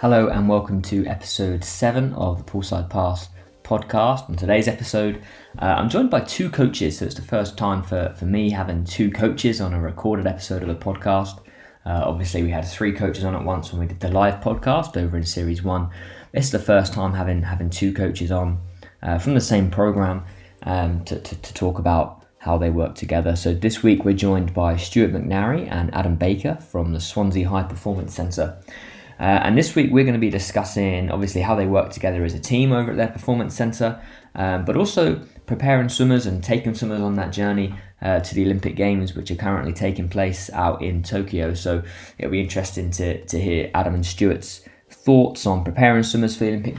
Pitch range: 90-110 Hz